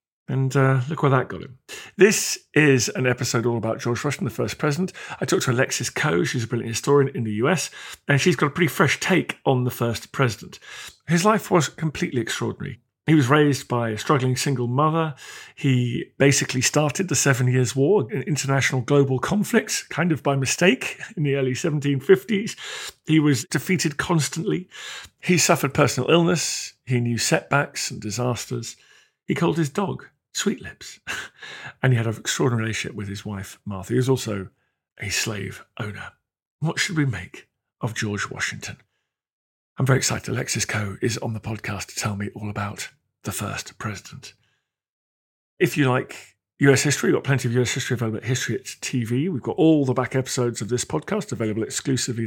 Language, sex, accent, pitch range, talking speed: English, male, British, 120-160 Hz, 185 wpm